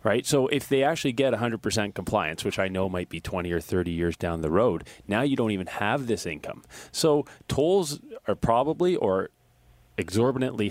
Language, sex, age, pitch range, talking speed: English, male, 40-59, 95-130 Hz, 185 wpm